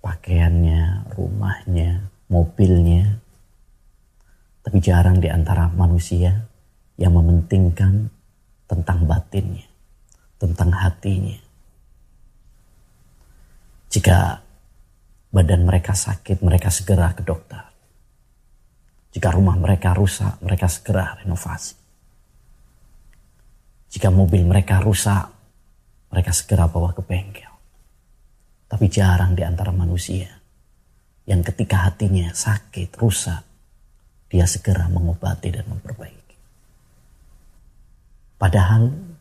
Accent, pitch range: native, 90-100 Hz